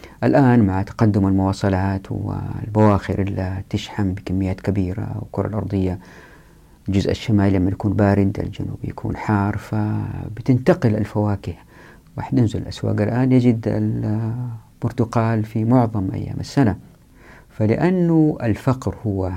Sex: female